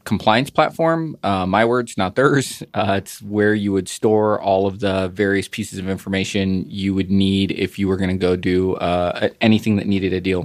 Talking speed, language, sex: 205 wpm, English, male